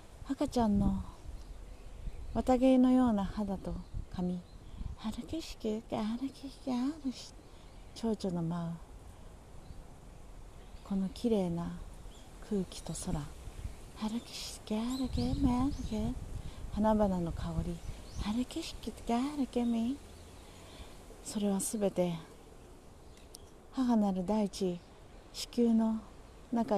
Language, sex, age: Japanese, female, 40-59